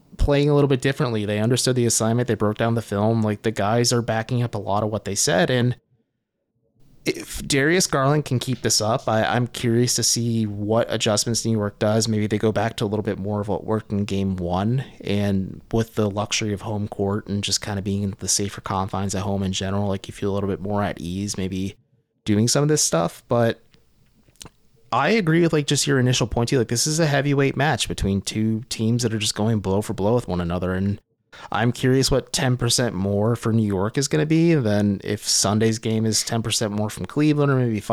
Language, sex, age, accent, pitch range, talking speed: English, male, 20-39, American, 105-130 Hz, 235 wpm